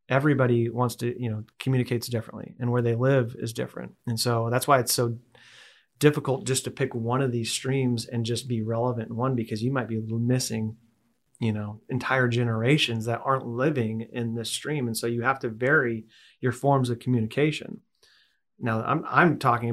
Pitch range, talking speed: 115-125 Hz, 190 wpm